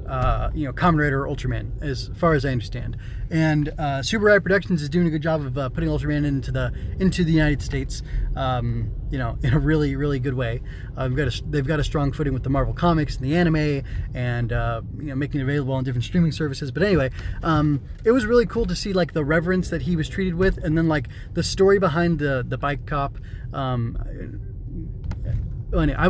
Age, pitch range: 20-39, 130-175 Hz